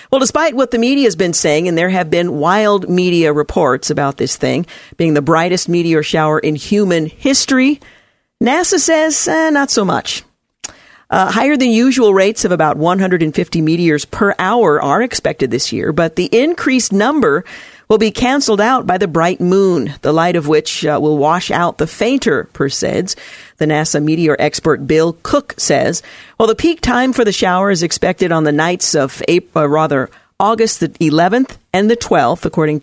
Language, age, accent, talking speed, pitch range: English, 50-69, American, 185 wpm, 155-215 Hz